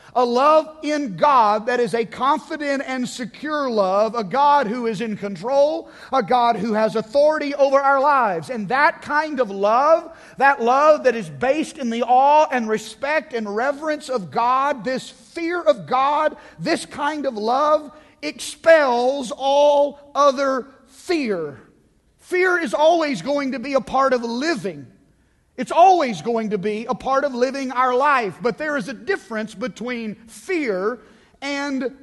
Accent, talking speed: American, 160 wpm